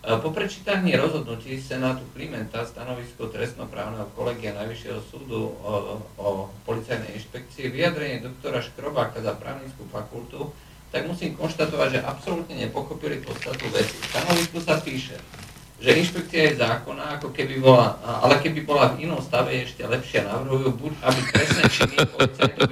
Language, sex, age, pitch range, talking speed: Slovak, male, 50-69, 125-155 Hz, 130 wpm